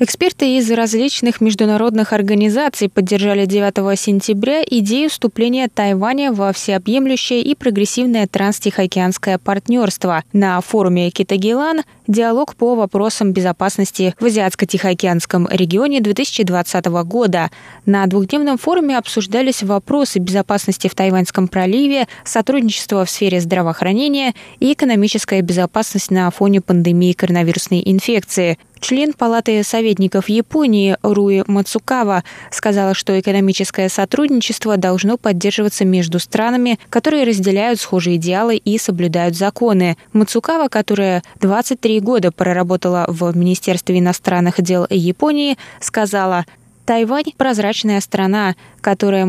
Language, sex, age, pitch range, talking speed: Russian, female, 20-39, 185-230 Hz, 105 wpm